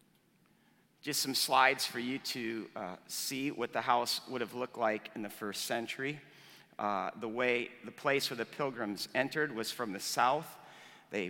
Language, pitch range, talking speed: English, 115-165 Hz, 175 wpm